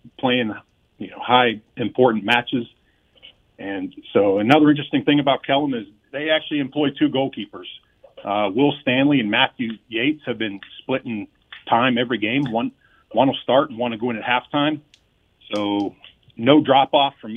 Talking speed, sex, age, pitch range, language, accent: 160 wpm, male, 40-59, 110-140 Hz, English, American